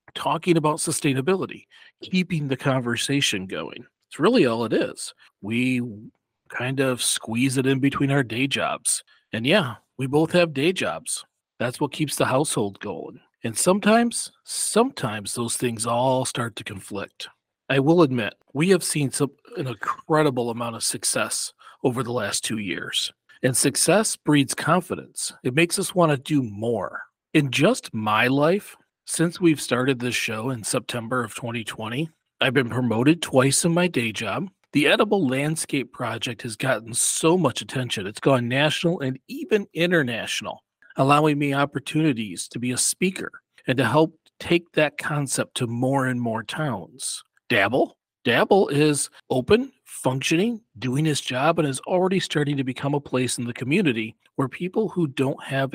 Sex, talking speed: male, 160 wpm